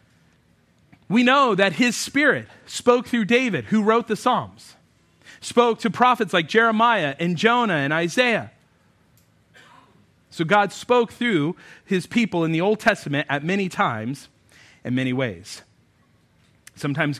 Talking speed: 135 wpm